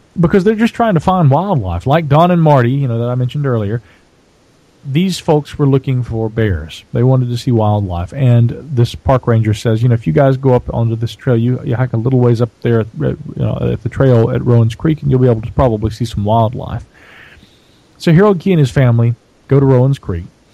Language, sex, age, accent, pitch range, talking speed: English, male, 40-59, American, 115-140 Hz, 225 wpm